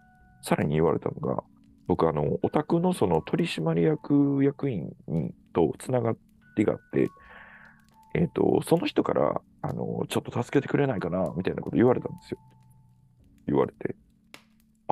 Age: 40-59